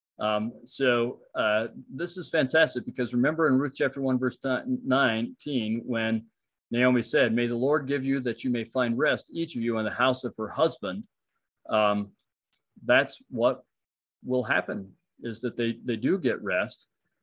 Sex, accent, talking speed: male, American, 165 wpm